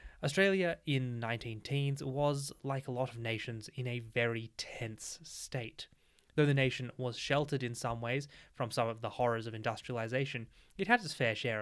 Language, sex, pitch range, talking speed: English, male, 115-145 Hz, 185 wpm